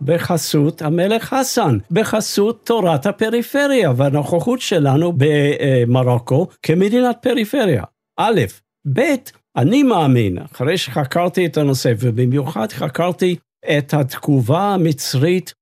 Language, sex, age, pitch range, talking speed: Hebrew, male, 60-79, 125-170 Hz, 90 wpm